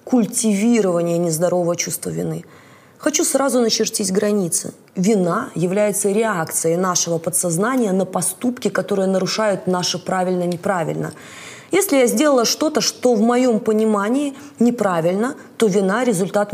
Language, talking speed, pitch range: Russian, 110 wpm, 185-240 Hz